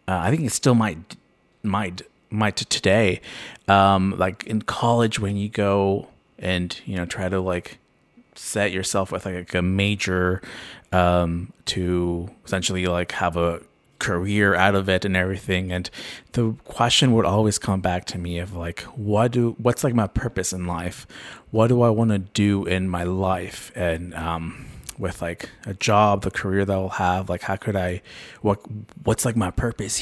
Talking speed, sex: 175 wpm, male